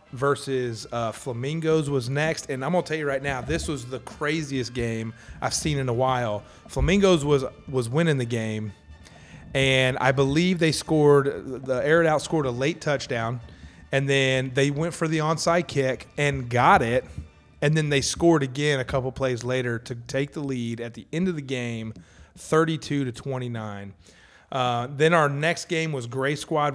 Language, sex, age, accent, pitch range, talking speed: English, male, 30-49, American, 115-145 Hz, 185 wpm